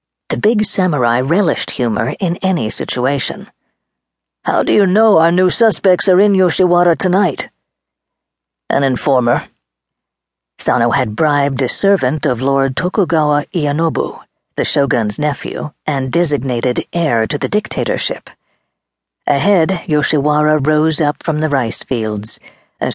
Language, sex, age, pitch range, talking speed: English, female, 50-69, 120-170 Hz, 125 wpm